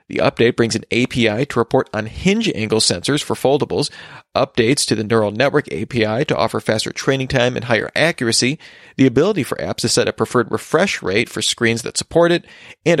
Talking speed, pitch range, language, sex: 200 wpm, 115-150 Hz, English, male